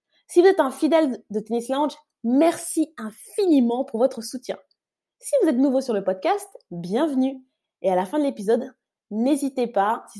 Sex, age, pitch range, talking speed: female, 20-39, 200-245 Hz, 175 wpm